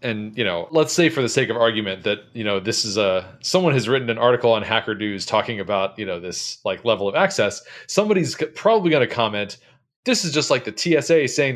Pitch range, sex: 110-140 Hz, male